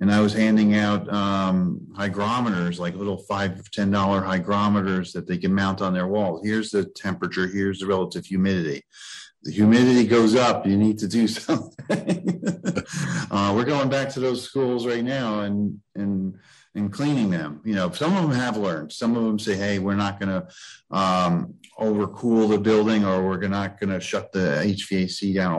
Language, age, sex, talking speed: English, 40-59, male, 185 wpm